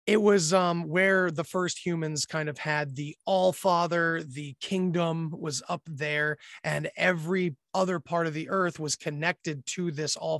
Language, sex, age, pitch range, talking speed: English, male, 30-49, 150-185 Hz, 175 wpm